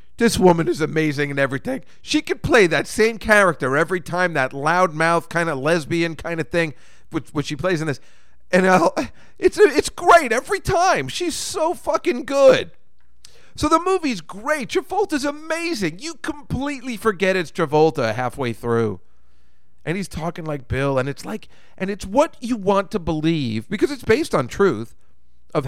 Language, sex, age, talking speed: English, male, 40-59, 175 wpm